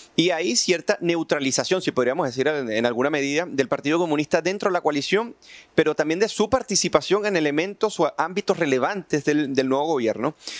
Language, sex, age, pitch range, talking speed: Spanish, male, 30-49, 145-190 Hz, 175 wpm